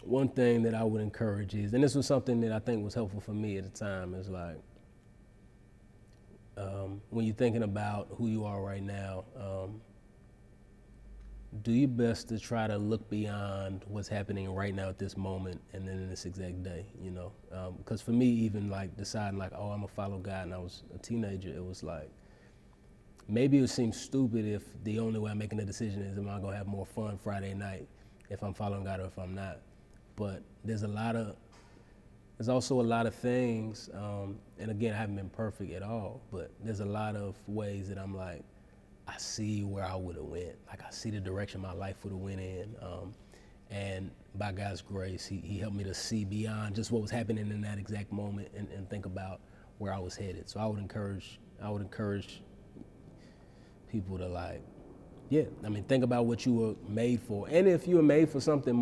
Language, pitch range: English, 95-110 Hz